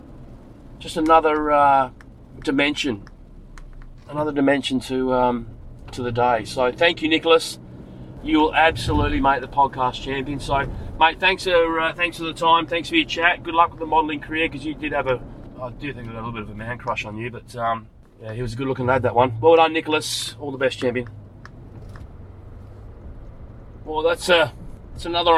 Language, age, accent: English, 30-49, Australian